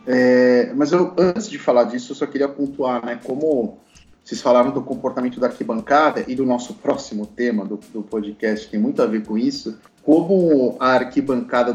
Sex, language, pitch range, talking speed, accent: male, Portuguese, 115-145 Hz, 190 wpm, Brazilian